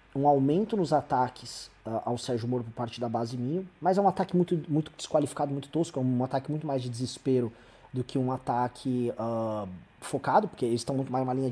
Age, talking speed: 20-39, 225 wpm